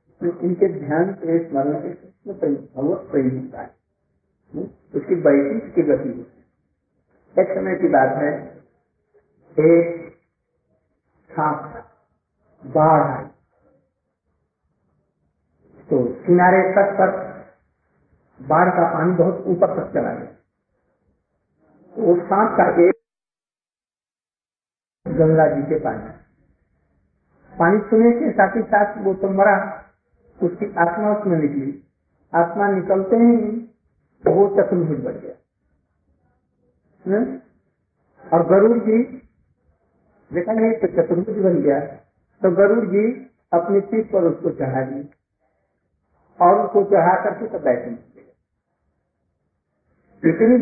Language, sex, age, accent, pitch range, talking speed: Hindi, male, 50-69, native, 145-200 Hz, 85 wpm